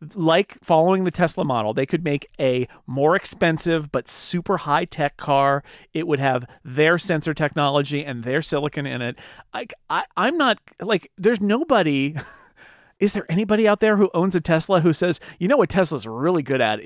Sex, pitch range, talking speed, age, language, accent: male, 145-195 Hz, 175 wpm, 40-59, English, American